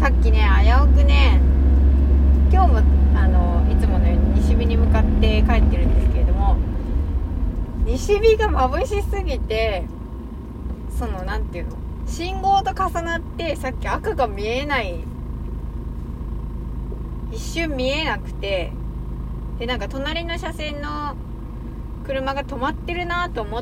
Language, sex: Japanese, female